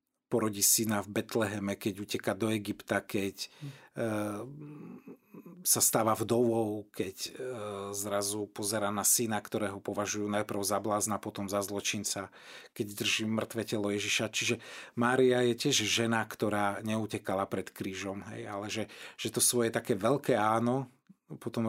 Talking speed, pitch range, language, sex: 140 wpm, 100-120 Hz, Slovak, male